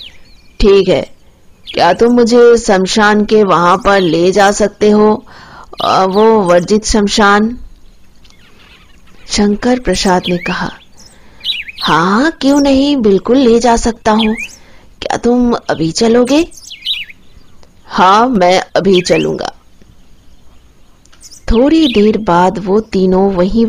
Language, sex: Hindi, female